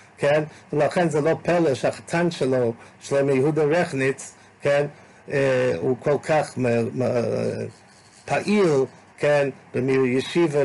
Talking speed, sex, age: 100 wpm, male, 50-69